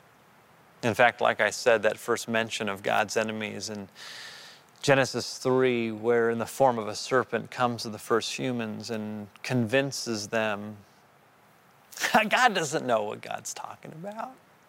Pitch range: 130-205 Hz